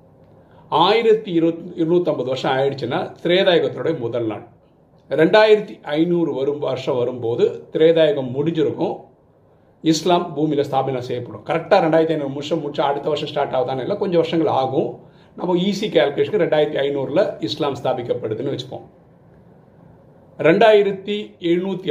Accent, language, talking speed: native, Tamil, 110 wpm